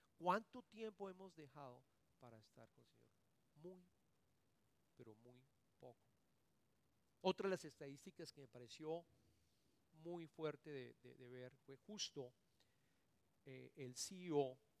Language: English